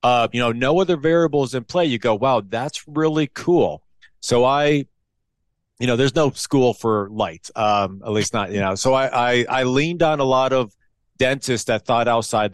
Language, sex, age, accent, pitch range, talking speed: English, male, 40-59, American, 110-130 Hz, 200 wpm